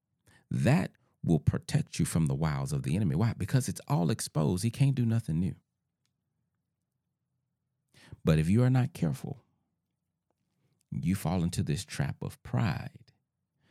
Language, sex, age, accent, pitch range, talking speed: English, male, 40-59, American, 105-150 Hz, 145 wpm